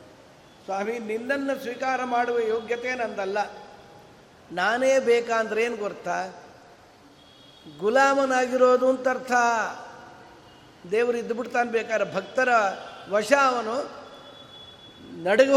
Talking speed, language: 75 wpm, Kannada